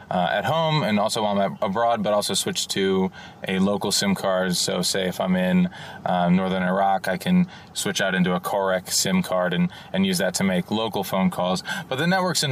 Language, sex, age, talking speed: English, male, 20-39, 225 wpm